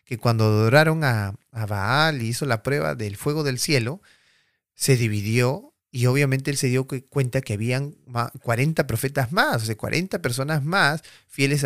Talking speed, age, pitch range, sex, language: 170 wpm, 30-49, 110-140 Hz, male, Spanish